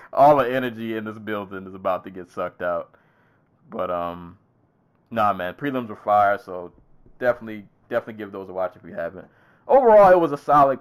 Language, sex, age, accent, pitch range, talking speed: English, male, 20-39, American, 95-120 Hz, 190 wpm